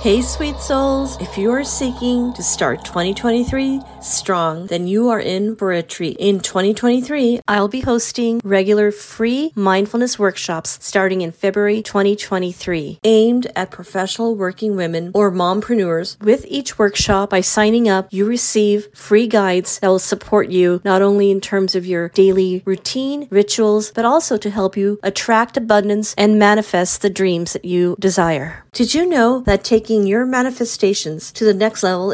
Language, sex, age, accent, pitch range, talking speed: English, female, 40-59, American, 185-230 Hz, 160 wpm